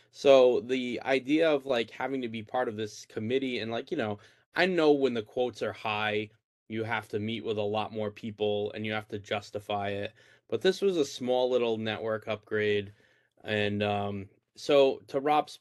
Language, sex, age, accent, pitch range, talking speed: English, male, 20-39, American, 105-125 Hz, 195 wpm